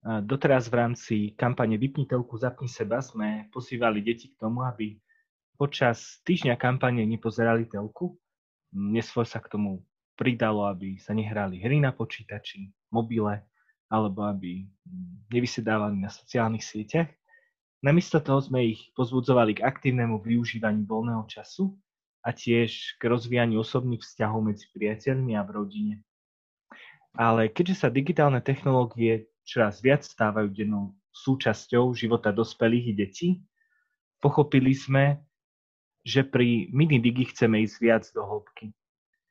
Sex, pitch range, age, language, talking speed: male, 105-135 Hz, 20-39, Slovak, 125 wpm